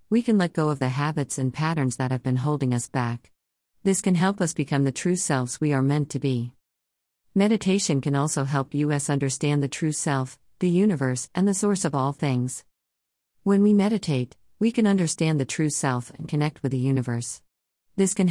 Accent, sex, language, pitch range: American, female, English, 130-160 Hz